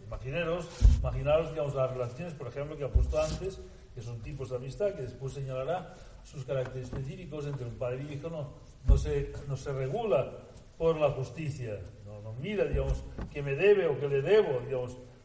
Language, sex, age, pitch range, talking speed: Spanish, male, 60-79, 115-150 Hz, 190 wpm